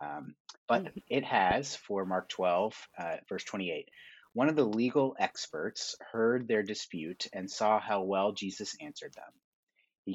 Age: 30-49